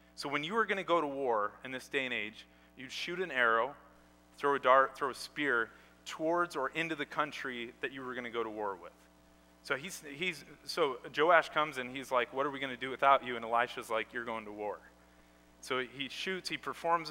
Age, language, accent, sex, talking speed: 30-49, English, American, male, 230 wpm